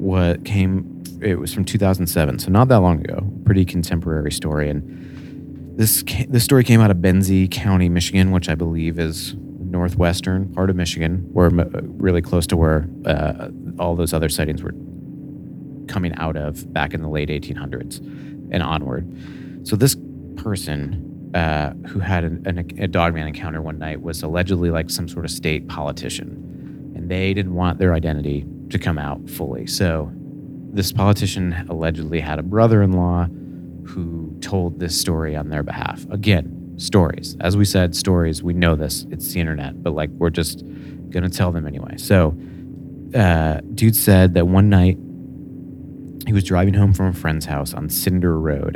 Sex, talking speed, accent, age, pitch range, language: male, 170 wpm, American, 30-49, 80-95 Hz, English